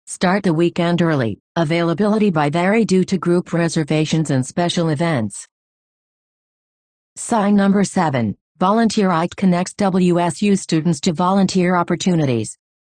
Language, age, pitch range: English, 50-69, 150-185 Hz